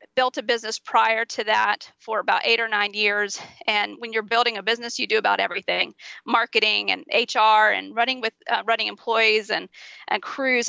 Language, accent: English, American